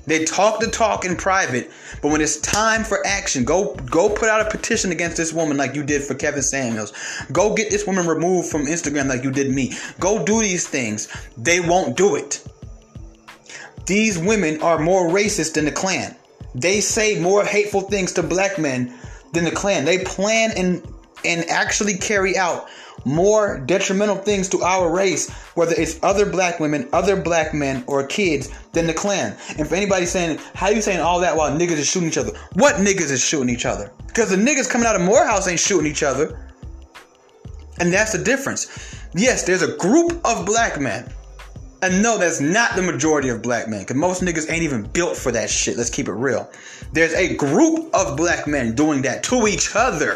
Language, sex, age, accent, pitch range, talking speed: English, male, 30-49, American, 150-205 Hz, 200 wpm